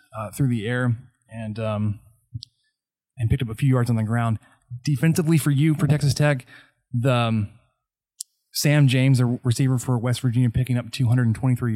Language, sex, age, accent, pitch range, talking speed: English, male, 20-39, American, 115-135 Hz, 170 wpm